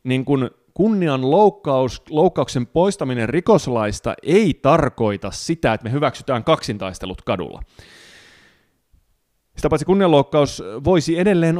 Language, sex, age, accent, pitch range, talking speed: Finnish, male, 30-49, native, 120-175 Hz, 105 wpm